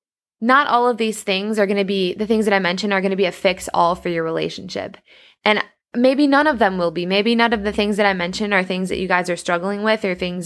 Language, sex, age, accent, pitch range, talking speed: English, female, 20-39, American, 180-215 Hz, 275 wpm